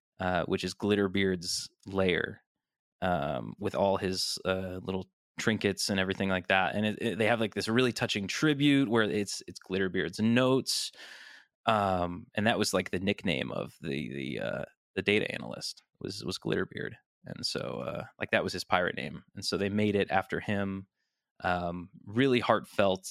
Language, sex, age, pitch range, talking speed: English, male, 20-39, 90-110 Hz, 175 wpm